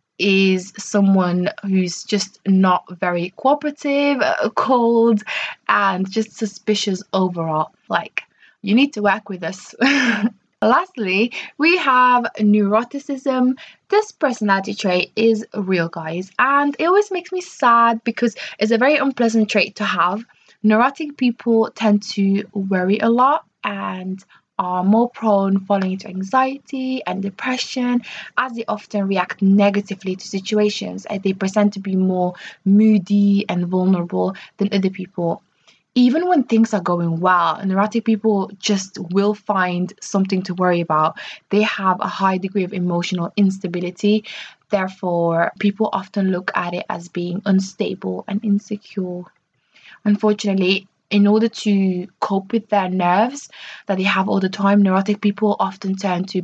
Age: 20-39